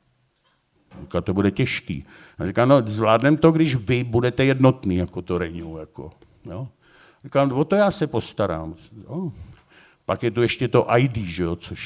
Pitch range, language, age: 95-120 Hz, Czech, 60-79